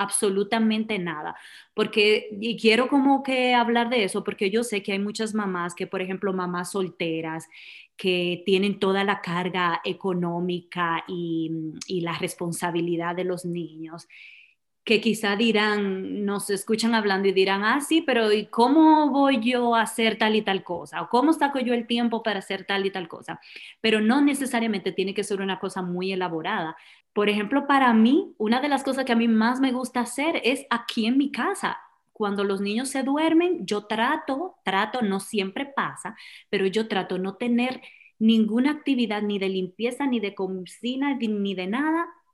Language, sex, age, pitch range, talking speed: Spanish, female, 20-39, 190-240 Hz, 175 wpm